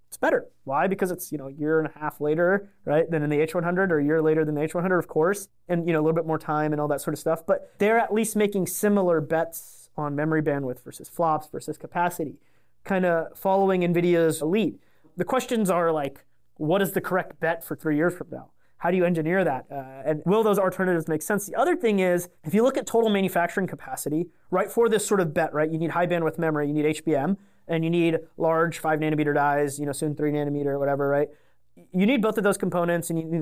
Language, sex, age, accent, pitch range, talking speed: English, male, 30-49, American, 155-195 Hz, 245 wpm